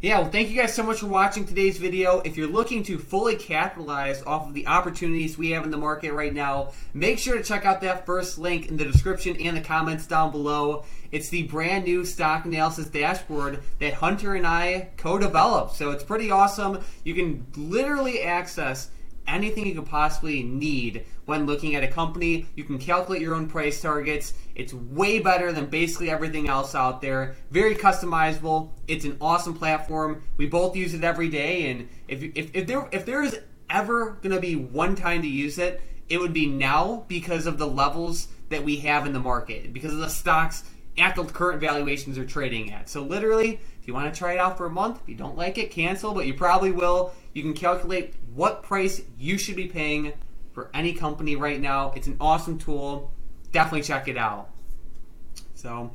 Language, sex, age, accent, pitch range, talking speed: English, male, 20-39, American, 150-185 Hz, 205 wpm